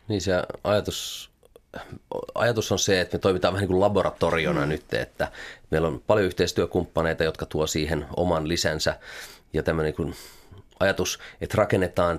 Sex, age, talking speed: male, 30-49, 140 wpm